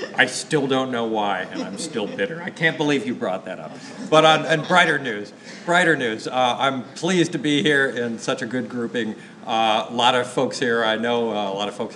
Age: 40-59